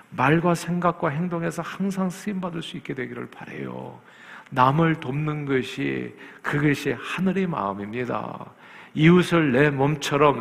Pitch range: 125-165 Hz